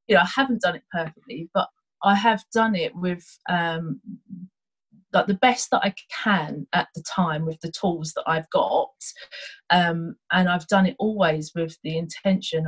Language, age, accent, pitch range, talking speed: English, 30-49, British, 160-200 Hz, 180 wpm